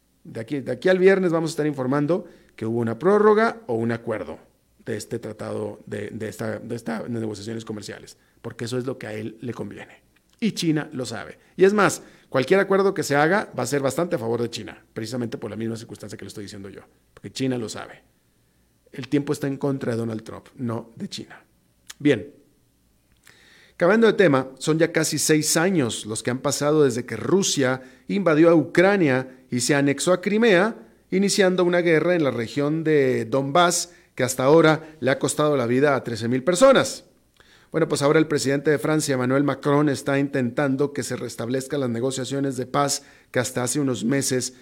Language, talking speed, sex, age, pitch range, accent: Spanish, 200 wpm, male, 40-59, 120-155 Hz, Mexican